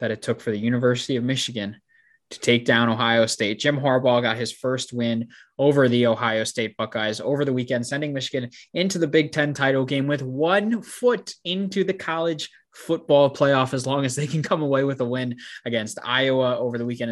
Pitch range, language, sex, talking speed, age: 120-140 Hz, English, male, 205 wpm, 20-39